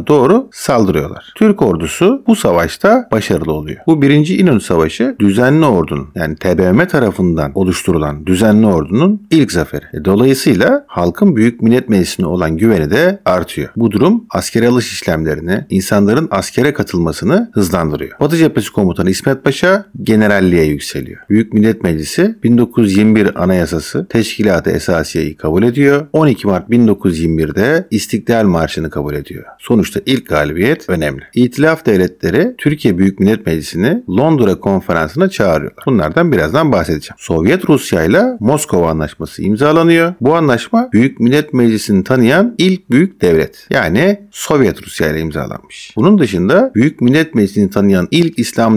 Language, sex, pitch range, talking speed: Turkish, male, 85-145 Hz, 130 wpm